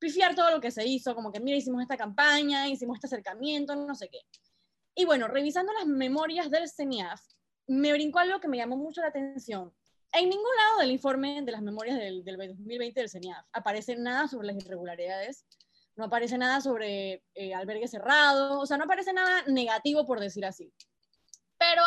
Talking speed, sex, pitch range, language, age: 190 wpm, female, 220-290 Hz, Spanish, 20-39